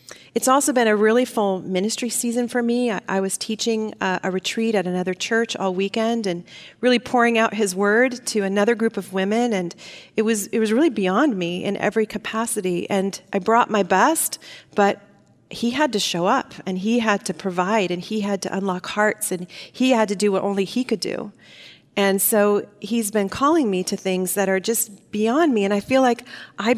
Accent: American